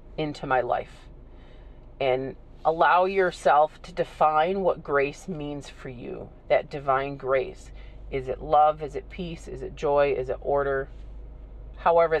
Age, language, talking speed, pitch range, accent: 40-59, English, 145 wpm, 130-185 Hz, American